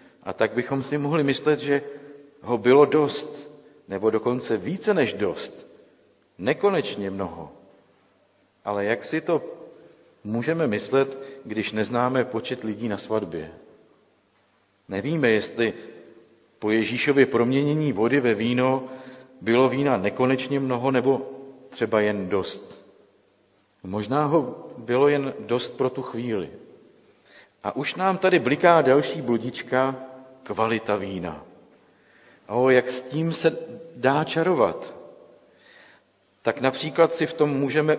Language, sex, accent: Czech, male, native